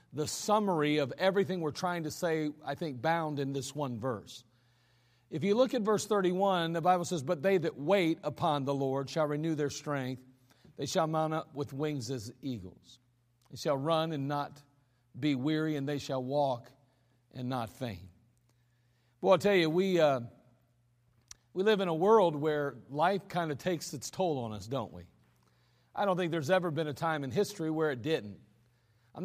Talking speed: 190 wpm